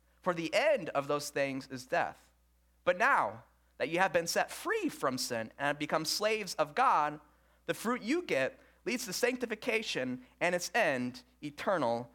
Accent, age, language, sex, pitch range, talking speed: American, 30-49, English, male, 145-220 Hz, 175 wpm